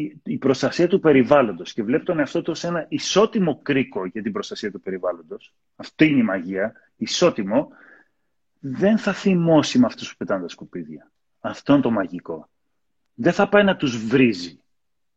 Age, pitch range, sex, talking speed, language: 30-49, 130-195 Hz, male, 160 wpm, Greek